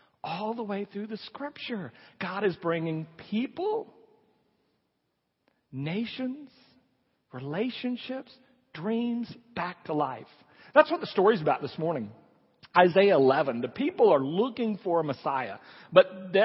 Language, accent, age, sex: English, American, 50-69, male